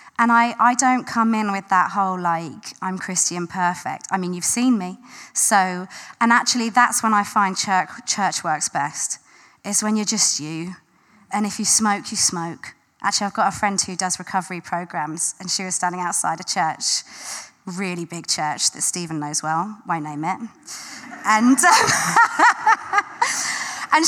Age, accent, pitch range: 20-39, British, 180-235 Hz